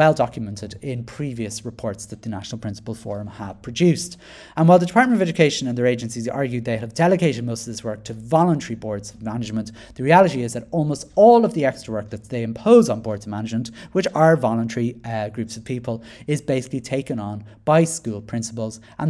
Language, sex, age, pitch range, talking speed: English, male, 30-49, 110-145 Hz, 205 wpm